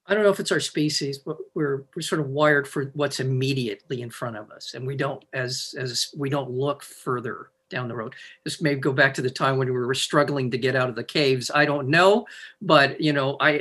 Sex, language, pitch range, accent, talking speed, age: male, English, 135-170 Hz, American, 245 wpm, 50-69